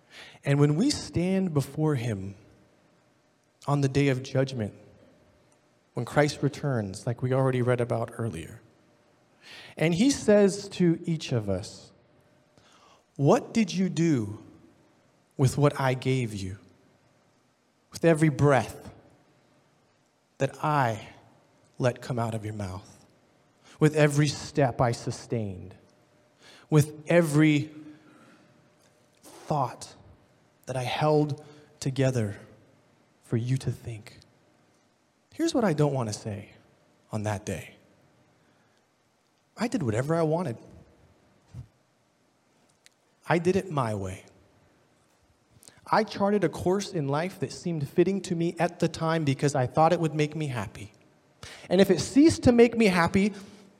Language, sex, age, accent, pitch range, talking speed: English, male, 30-49, American, 115-160 Hz, 125 wpm